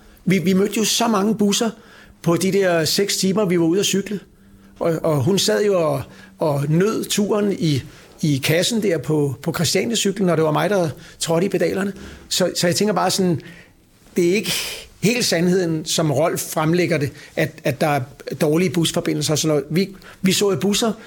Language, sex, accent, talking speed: Danish, male, native, 200 wpm